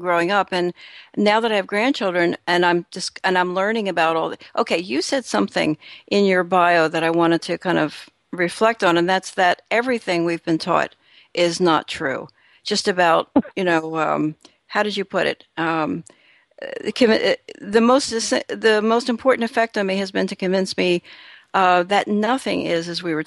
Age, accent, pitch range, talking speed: 60-79, American, 175-210 Hz, 190 wpm